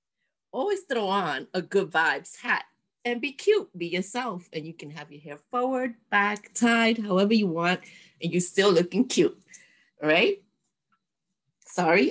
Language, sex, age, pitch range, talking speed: English, female, 30-49, 170-225 Hz, 155 wpm